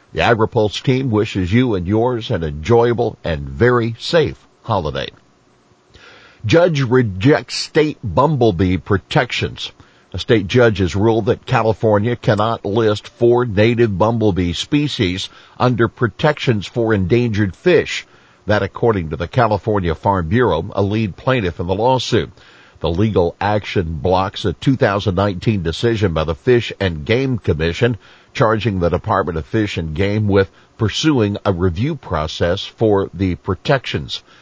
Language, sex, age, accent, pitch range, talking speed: English, male, 50-69, American, 95-120 Hz, 135 wpm